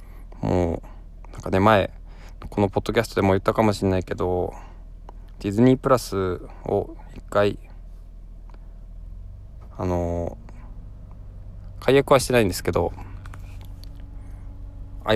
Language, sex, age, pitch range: Japanese, male, 20-39, 85-105 Hz